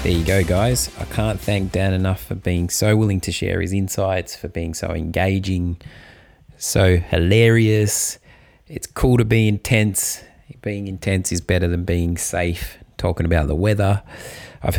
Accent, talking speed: Australian, 160 wpm